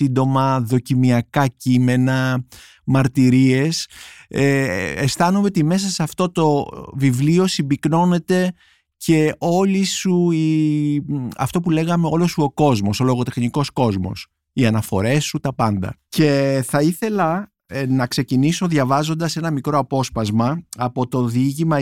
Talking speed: 115 wpm